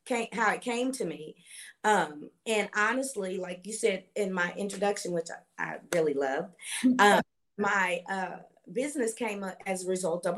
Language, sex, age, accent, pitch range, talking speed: English, female, 30-49, American, 175-225 Hz, 175 wpm